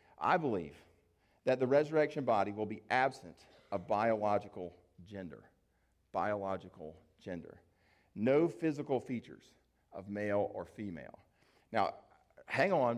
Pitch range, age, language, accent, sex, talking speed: 100-140 Hz, 40-59, English, American, male, 110 wpm